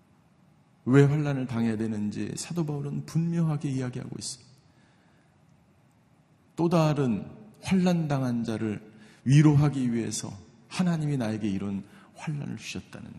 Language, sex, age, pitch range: Korean, male, 40-59, 130-160 Hz